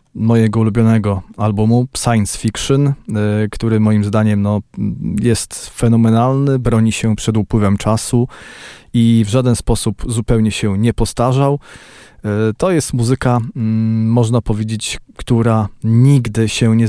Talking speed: 115 wpm